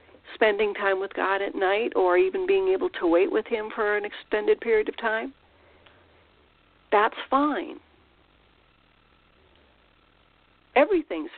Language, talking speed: English, 120 wpm